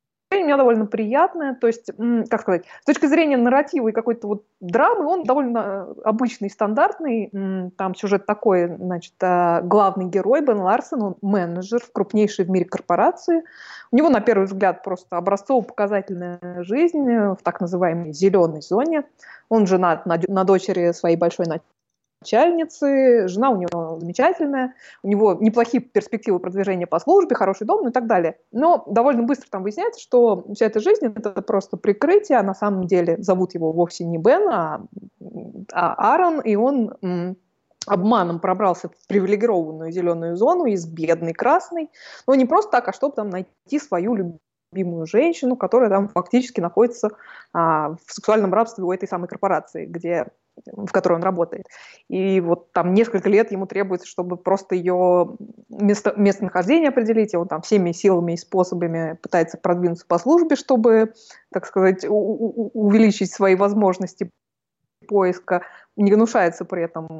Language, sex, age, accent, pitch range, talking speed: Russian, female, 20-39, native, 180-240 Hz, 150 wpm